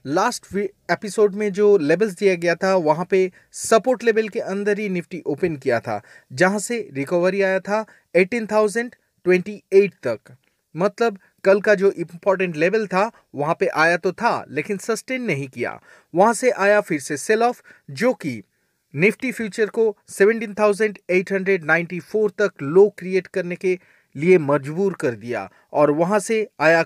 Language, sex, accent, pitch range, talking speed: Hindi, male, native, 160-210 Hz, 160 wpm